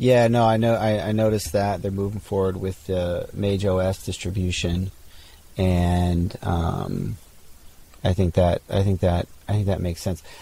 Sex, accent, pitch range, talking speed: male, American, 85-110 Hz, 160 wpm